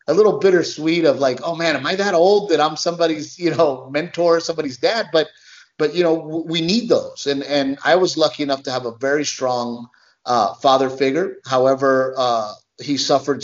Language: English